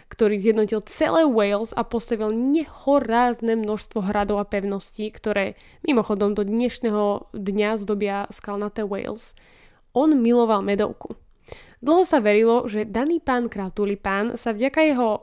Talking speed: 130 wpm